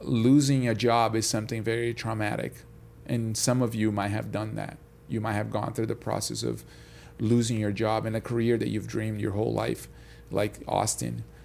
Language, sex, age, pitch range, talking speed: English, male, 40-59, 110-125 Hz, 195 wpm